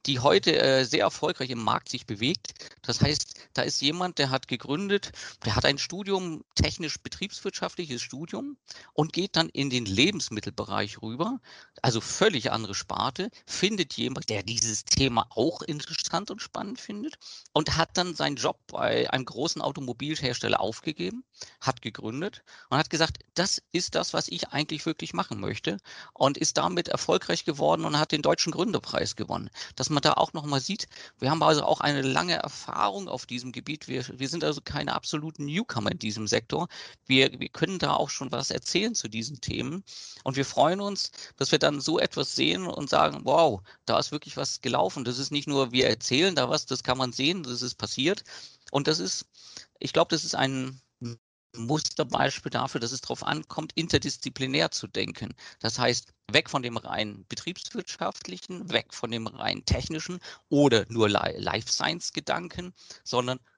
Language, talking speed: English, 175 wpm